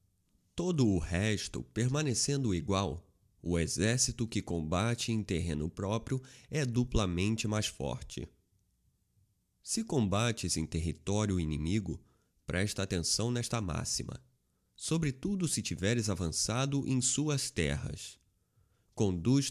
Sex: male